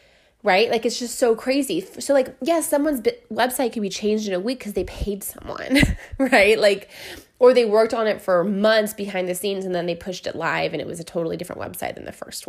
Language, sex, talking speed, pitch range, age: English, female, 245 wpm, 190-260 Hz, 20-39